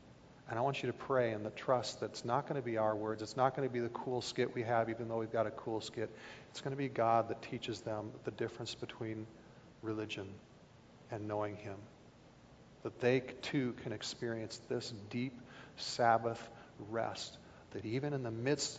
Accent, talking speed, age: American, 200 wpm, 40-59